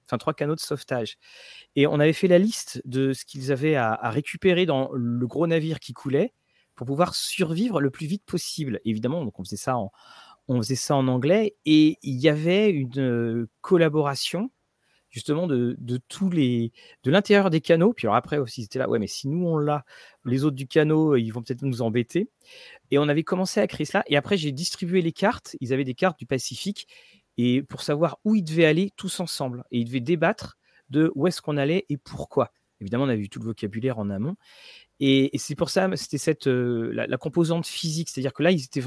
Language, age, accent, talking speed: French, 40-59, French, 225 wpm